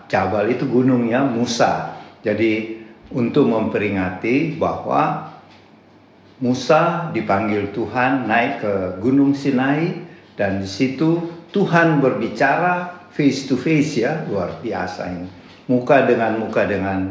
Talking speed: 105 wpm